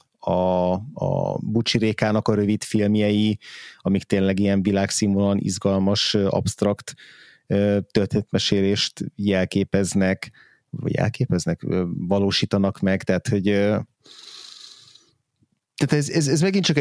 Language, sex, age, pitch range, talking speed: Hungarian, male, 30-49, 90-105 Hz, 95 wpm